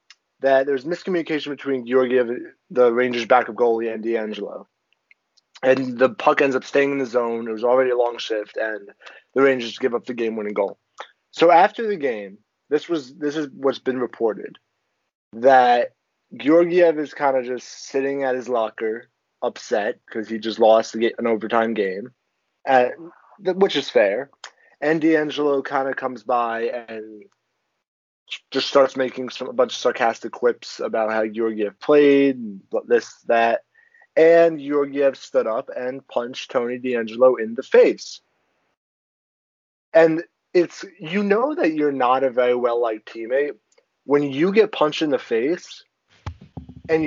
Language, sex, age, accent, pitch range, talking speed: English, male, 20-39, American, 120-160 Hz, 155 wpm